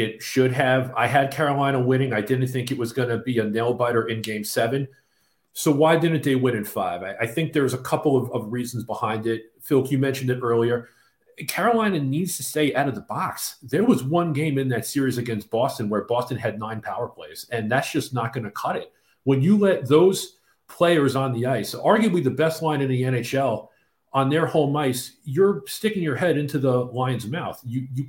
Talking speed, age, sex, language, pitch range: 220 wpm, 40-59, male, English, 120-160 Hz